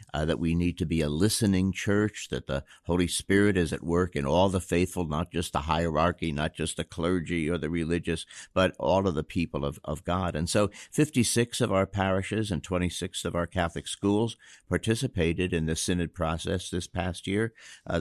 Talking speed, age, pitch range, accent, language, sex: 200 wpm, 60-79, 85-105 Hz, American, English, male